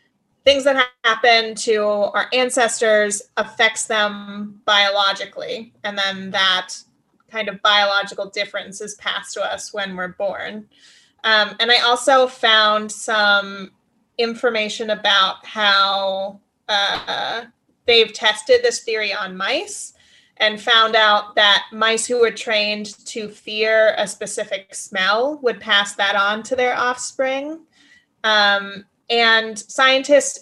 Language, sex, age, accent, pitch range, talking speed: English, female, 30-49, American, 205-240 Hz, 125 wpm